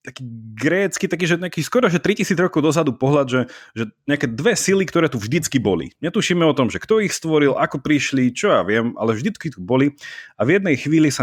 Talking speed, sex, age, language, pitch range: 205 wpm, male, 30-49, Slovak, 110-155 Hz